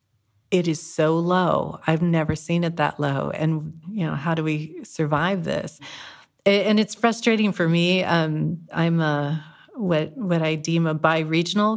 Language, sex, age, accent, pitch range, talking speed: English, female, 40-59, American, 155-175 Hz, 160 wpm